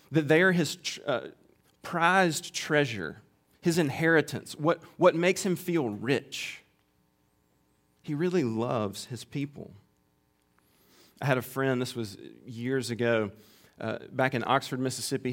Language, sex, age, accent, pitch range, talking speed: English, male, 40-59, American, 110-145 Hz, 130 wpm